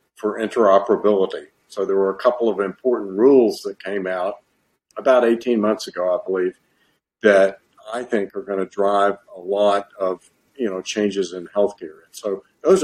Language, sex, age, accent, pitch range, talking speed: English, male, 50-69, American, 100-115 Hz, 170 wpm